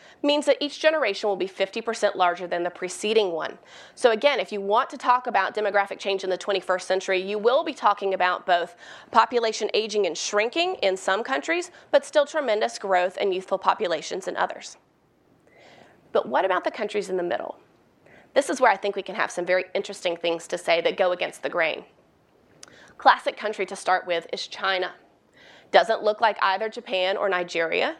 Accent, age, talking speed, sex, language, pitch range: American, 30-49, 190 wpm, female, English, 190-275 Hz